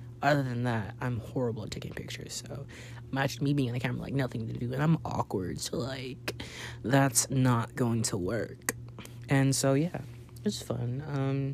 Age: 20-39